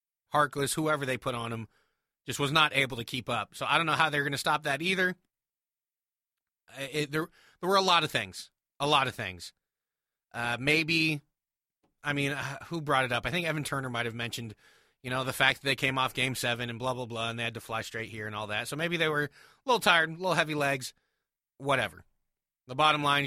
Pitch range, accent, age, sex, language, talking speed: 125-155 Hz, American, 30-49, male, English, 230 wpm